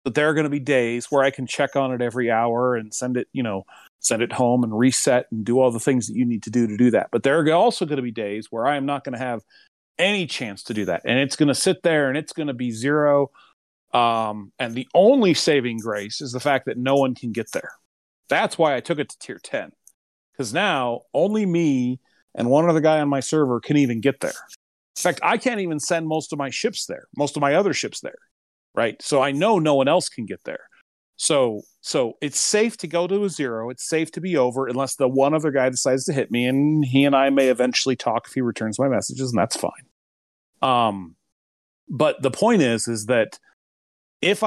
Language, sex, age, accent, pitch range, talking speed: English, male, 40-59, American, 120-155 Hz, 245 wpm